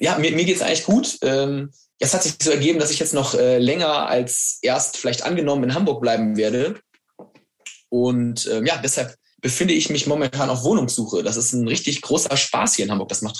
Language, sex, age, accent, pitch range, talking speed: German, male, 20-39, German, 120-155 Hz, 210 wpm